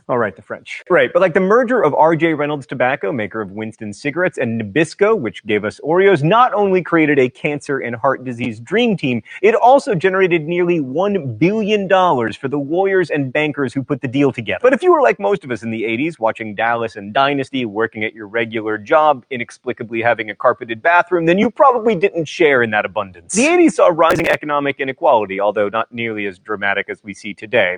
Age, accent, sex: 30-49, American, male